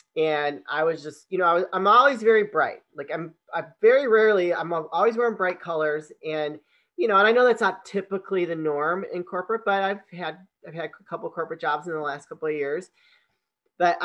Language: English